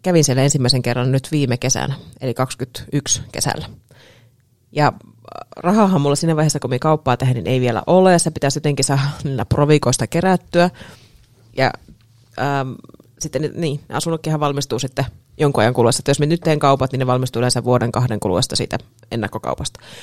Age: 30-49